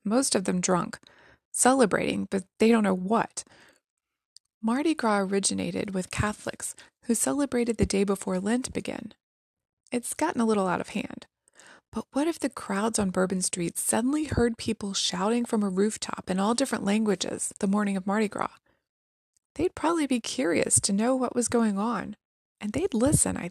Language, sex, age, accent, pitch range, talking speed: English, female, 20-39, American, 195-240 Hz, 170 wpm